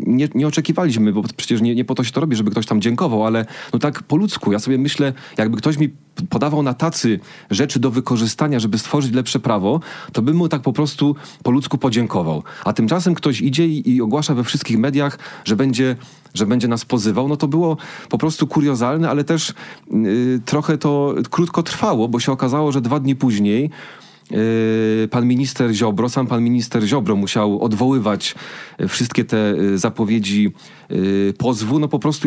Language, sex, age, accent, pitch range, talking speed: Polish, male, 30-49, native, 115-145 Hz, 180 wpm